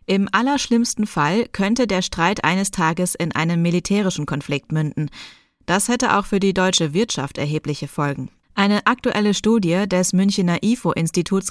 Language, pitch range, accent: German, 160-215 Hz, German